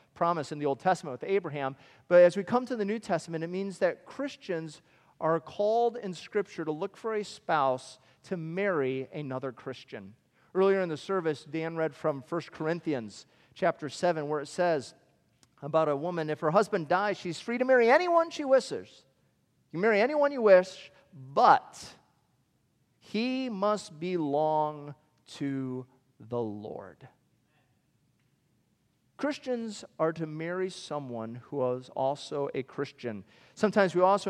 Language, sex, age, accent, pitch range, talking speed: English, male, 40-59, American, 135-185 Hz, 150 wpm